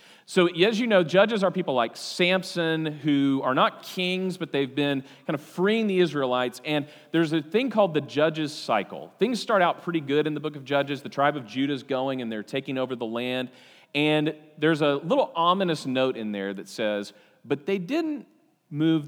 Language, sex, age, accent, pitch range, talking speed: English, male, 40-59, American, 110-170 Hz, 200 wpm